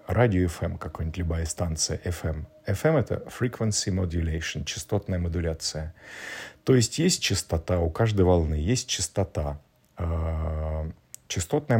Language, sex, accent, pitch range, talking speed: Russian, male, native, 90-115 Hz, 115 wpm